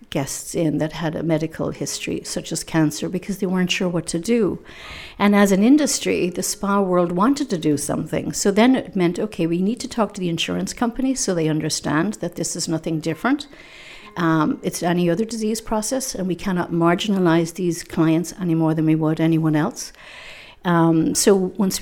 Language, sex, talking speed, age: English, female, 195 wpm, 60-79